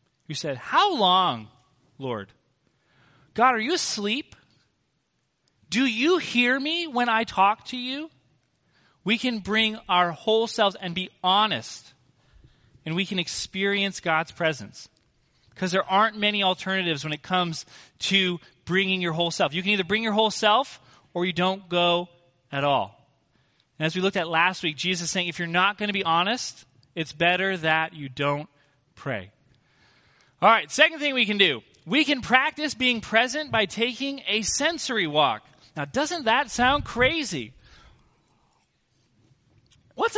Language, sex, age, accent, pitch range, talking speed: English, male, 30-49, American, 145-215 Hz, 155 wpm